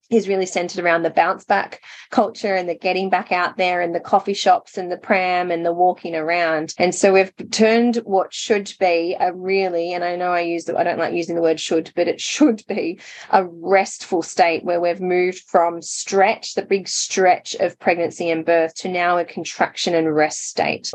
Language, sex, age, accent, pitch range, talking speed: English, female, 20-39, Australian, 170-195 Hz, 205 wpm